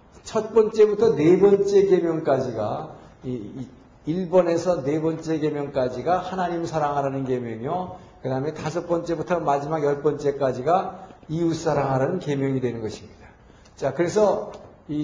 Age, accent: 50-69, native